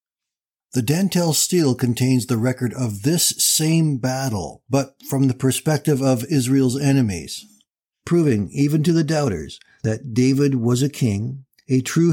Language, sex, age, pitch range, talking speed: English, male, 60-79, 115-145 Hz, 145 wpm